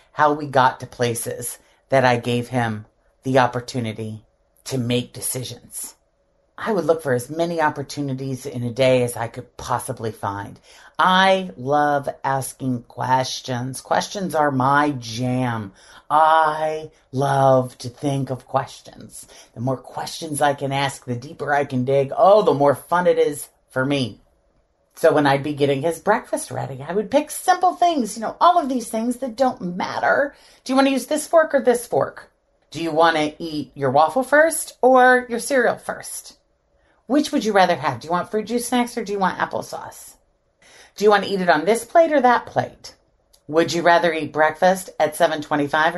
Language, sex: English, female